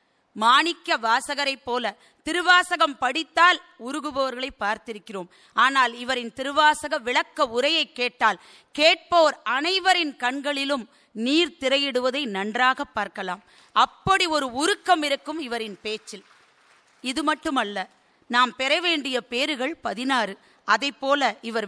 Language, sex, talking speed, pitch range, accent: Tamil, female, 100 wpm, 230-305 Hz, native